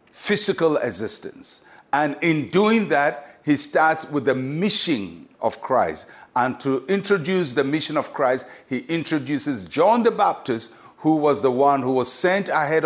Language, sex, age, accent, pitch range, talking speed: English, male, 60-79, Nigerian, 140-180 Hz, 155 wpm